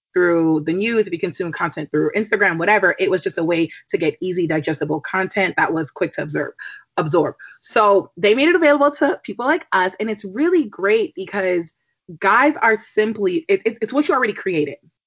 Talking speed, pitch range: 190 wpm, 165-215 Hz